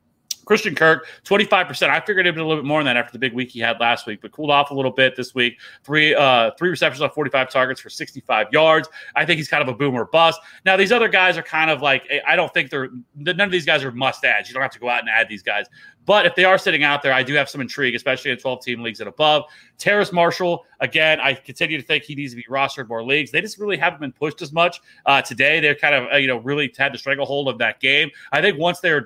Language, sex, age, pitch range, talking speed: English, male, 30-49, 125-150 Hz, 285 wpm